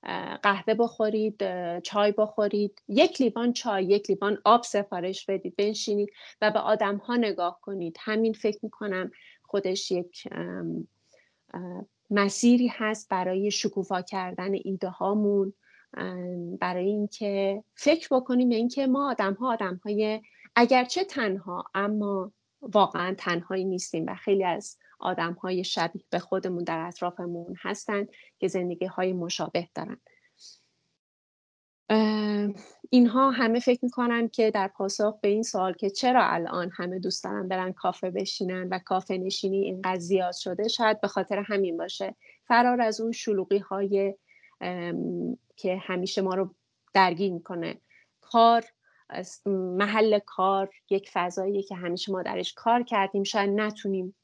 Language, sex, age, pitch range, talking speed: English, female, 30-49, 185-215 Hz, 130 wpm